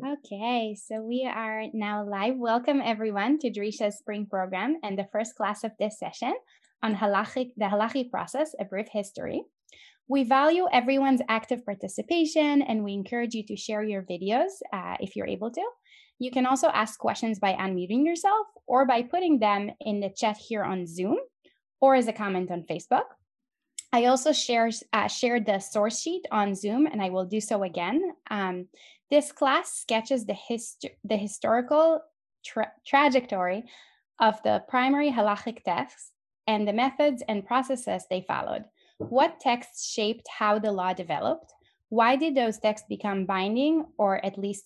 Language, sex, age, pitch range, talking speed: English, female, 10-29, 205-270 Hz, 160 wpm